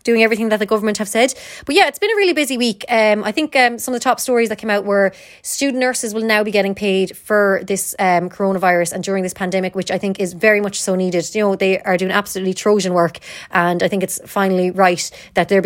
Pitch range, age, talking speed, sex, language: 190-235 Hz, 20-39, 255 wpm, female, English